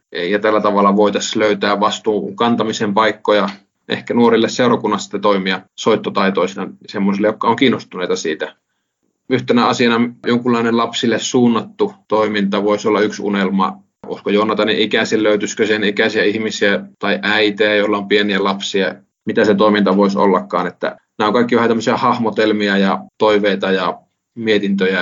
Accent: native